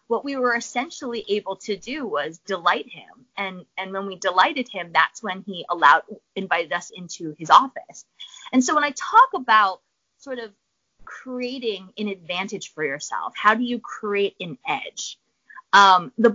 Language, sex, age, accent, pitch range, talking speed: English, female, 20-39, American, 185-250 Hz, 170 wpm